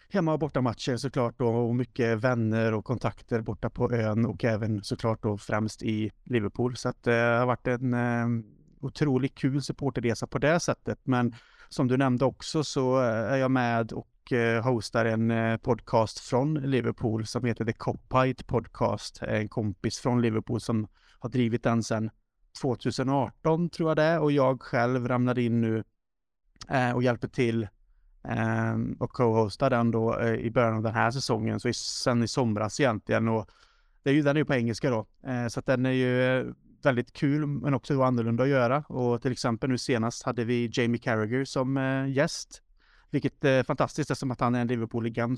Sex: male